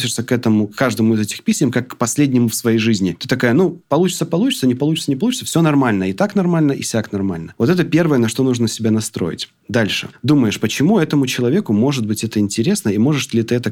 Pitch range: 110-150 Hz